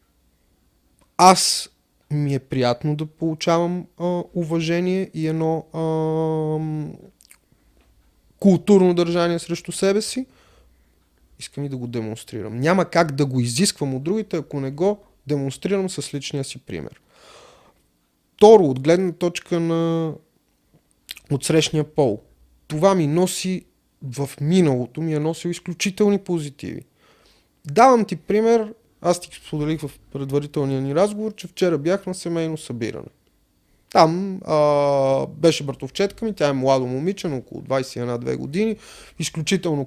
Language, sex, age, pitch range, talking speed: Bulgarian, male, 30-49, 135-185 Hz, 125 wpm